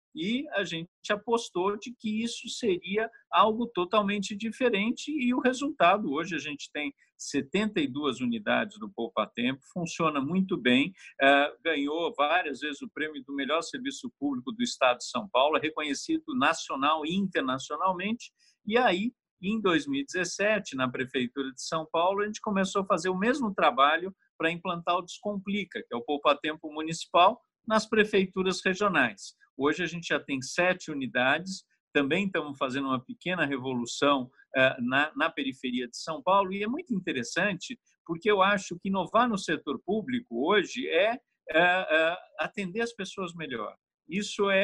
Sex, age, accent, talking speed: male, 50-69, Brazilian, 145 wpm